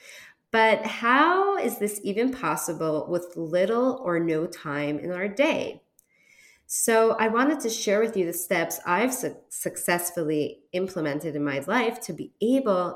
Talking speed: 150 wpm